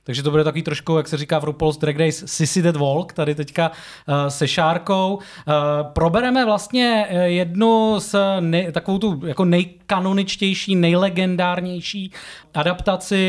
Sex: male